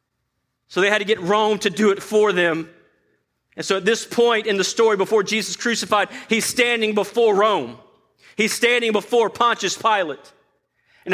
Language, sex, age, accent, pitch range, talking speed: English, male, 40-59, American, 190-235 Hz, 170 wpm